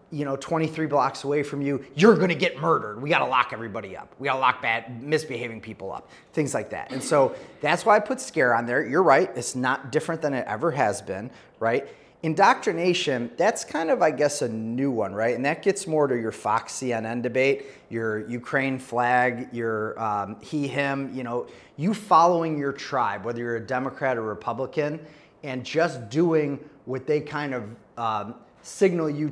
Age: 30-49